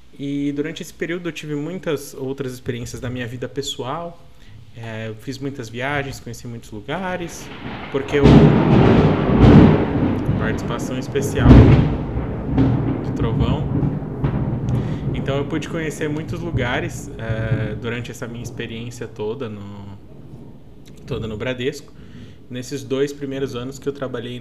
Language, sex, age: Portuguese, male, 20-39